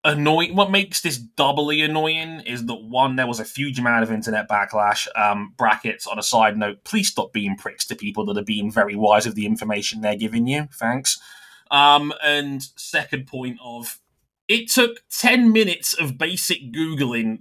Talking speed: 185 wpm